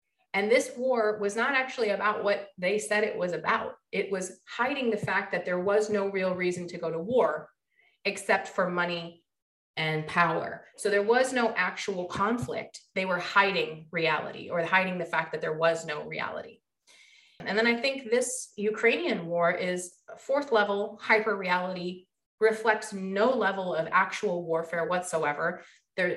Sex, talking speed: female, 165 wpm